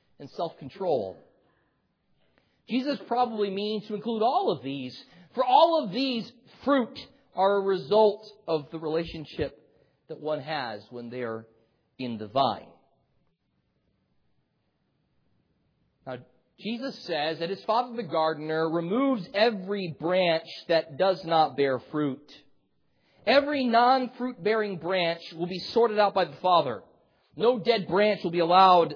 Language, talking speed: English, 130 wpm